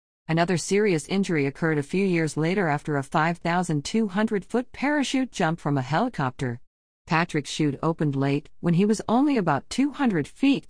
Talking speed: 150 wpm